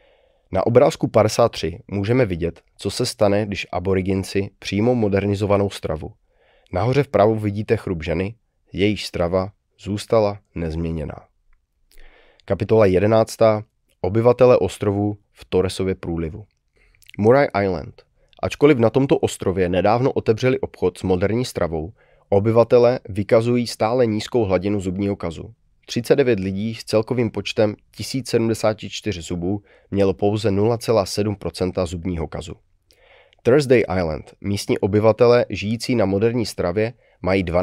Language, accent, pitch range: Czech, native, 95-115 Hz